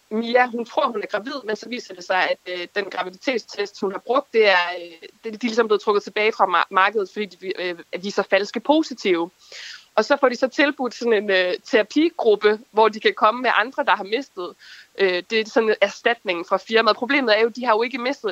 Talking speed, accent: 220 wpm, native